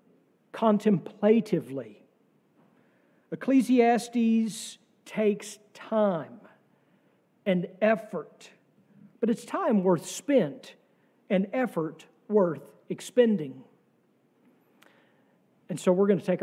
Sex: male